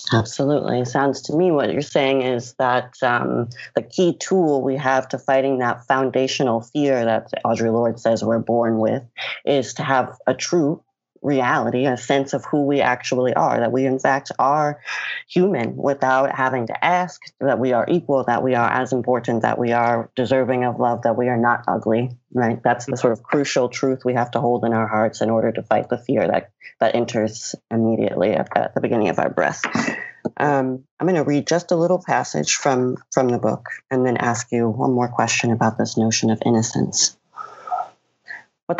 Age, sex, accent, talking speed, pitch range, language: 30-49, female, American, 195 wpm, 120-140 Hz, English